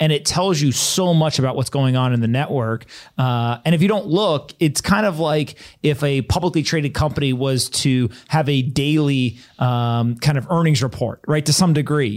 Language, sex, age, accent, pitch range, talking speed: English, male, 30-49, American, 130-160 Hz, 205 wpm